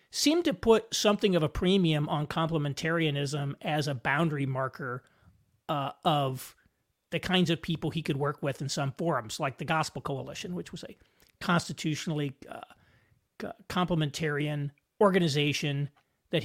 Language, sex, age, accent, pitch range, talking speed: English, male, 40-59, American, 145-185 Hz, 140 wpm